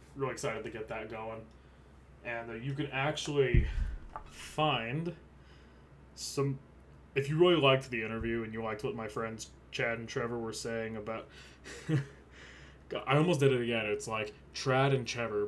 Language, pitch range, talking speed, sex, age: English, 100-135 Hz, 160 wpm, male, 20-39